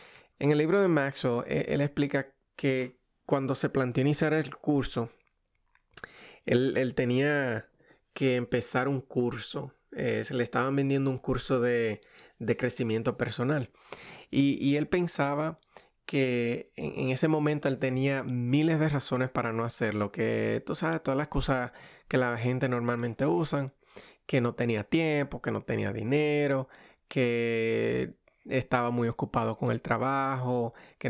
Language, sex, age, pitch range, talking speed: Spanish, male, 30-49, 120-140 Hz, 145 wpm